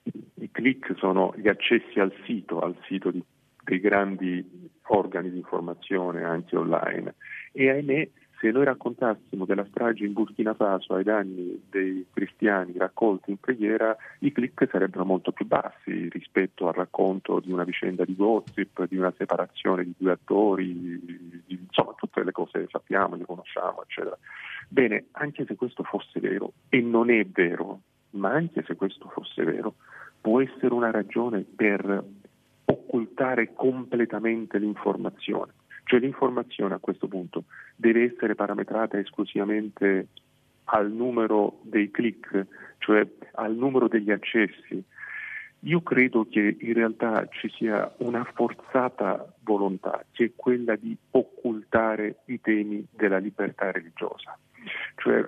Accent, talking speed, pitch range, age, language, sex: native, 135 wpm, 95-120 Hz, 40-59, Italian, male